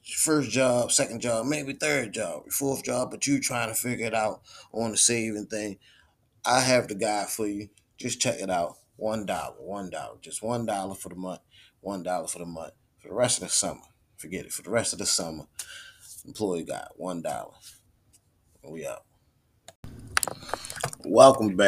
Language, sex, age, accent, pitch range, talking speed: English, male, 20-39, American, 100-125 Hz, 170 wpm